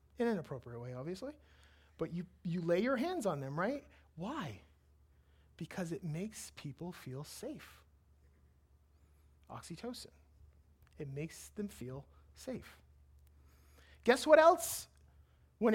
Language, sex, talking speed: English, male, 120 wpm